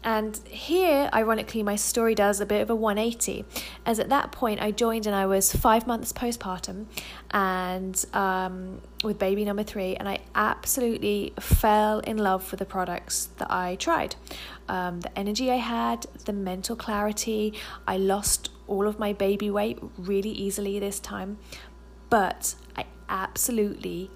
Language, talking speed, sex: English, 155 wpm, female